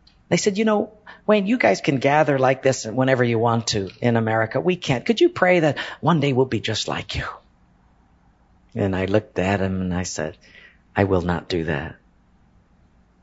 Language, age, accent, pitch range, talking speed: English, 50-69, American, 95-135 Hz, 195 wpm